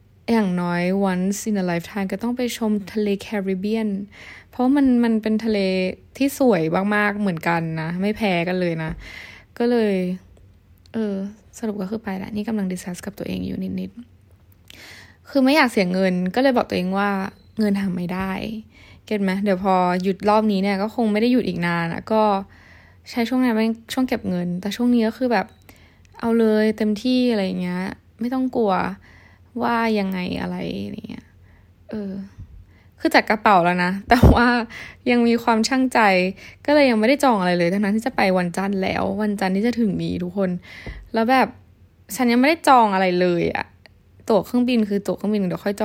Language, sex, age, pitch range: Thai, female, 20-39, 175-225 Hz